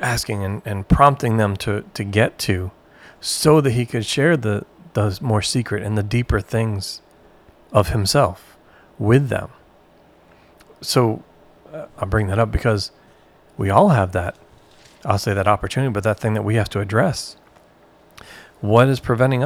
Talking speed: 160 wpm